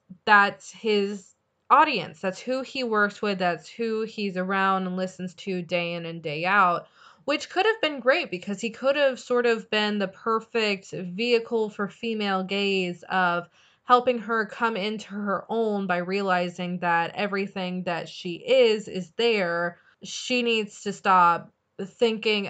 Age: 20-39